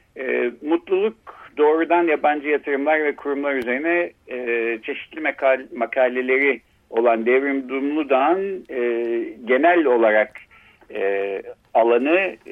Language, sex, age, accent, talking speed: Turkish, male, 60-79, native, 70 wpm